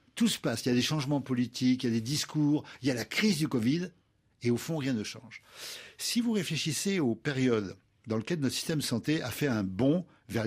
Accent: French